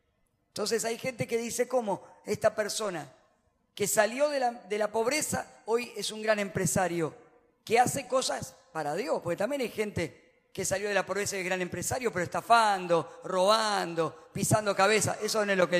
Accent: Argentinian